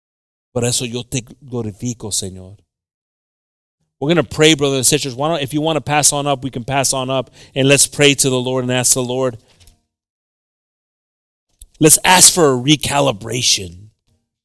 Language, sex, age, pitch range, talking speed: English, male, 30-49, 120-145 Hz, 175 wpm